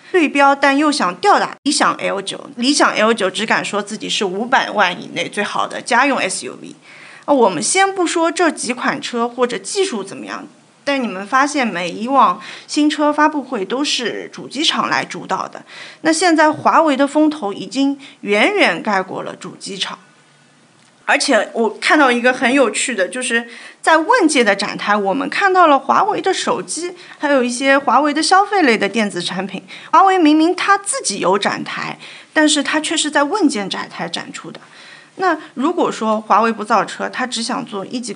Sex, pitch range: female, 225-310 Hz